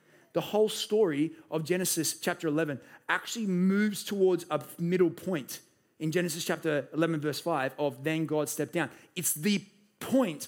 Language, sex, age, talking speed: English, male, 30-49, 155 wpm